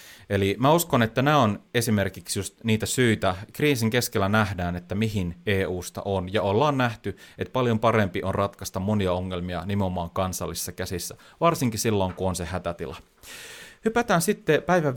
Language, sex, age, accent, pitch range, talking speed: Finnish, male, 30-49, native, 95-125 Hz, 155 wpm